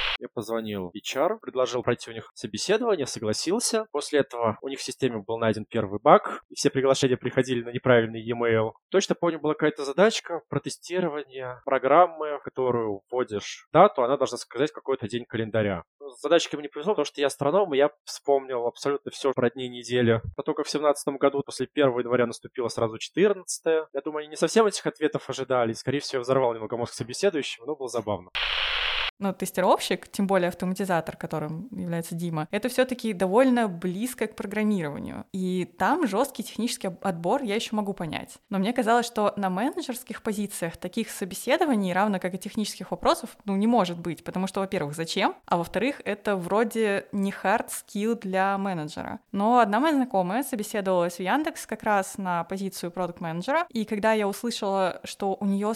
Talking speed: 170 wpm